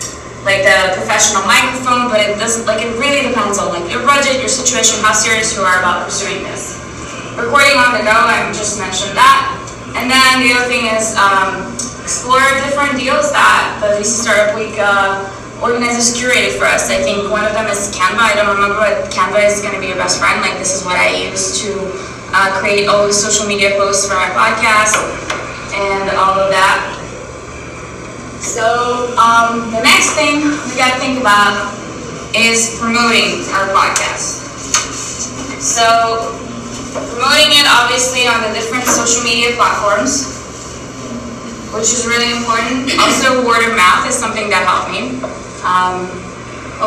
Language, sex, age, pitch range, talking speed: English, female, 20-39, 195-240 Hz, 170 wpm